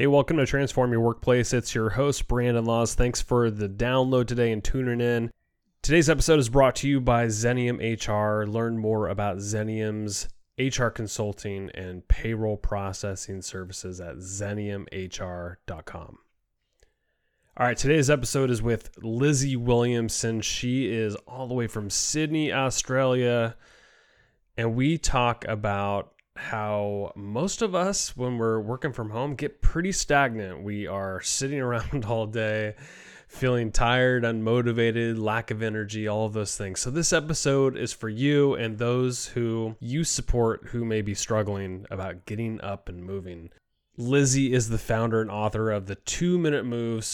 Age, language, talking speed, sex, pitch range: 20-39, English, 150 wpm, male, 105-130 Hz